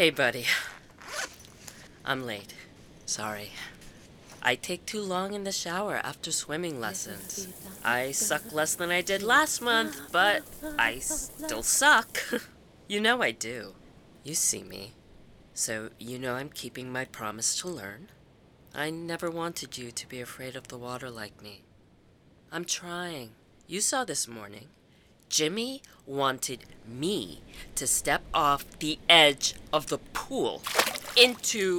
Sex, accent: female, American